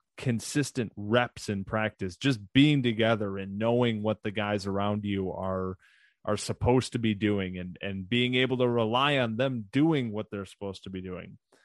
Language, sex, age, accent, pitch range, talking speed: English, male, 20-39, American, 100-120 Hz, 180 wpm